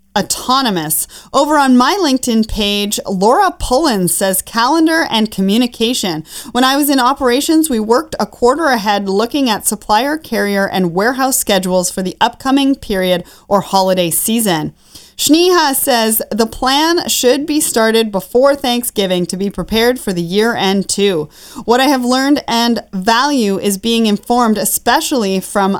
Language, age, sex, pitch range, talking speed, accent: English, 30-49, female, 200-260 Hz, 150 wpm, American